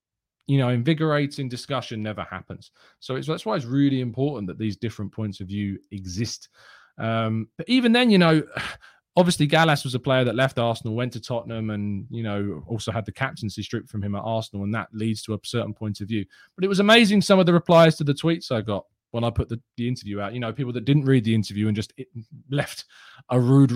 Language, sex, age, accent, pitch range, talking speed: English, male, 20-39, British, 105-150 Hz, 225 wpm